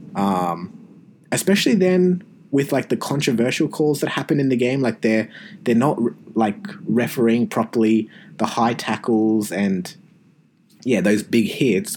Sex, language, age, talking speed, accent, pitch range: male, English, 20-39, 140 wpm, Australian, 110-155 Hz